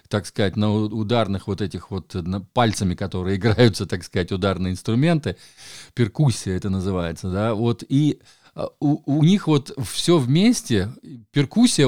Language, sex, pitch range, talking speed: Russian, male, 105-135 Hz, 135 wpm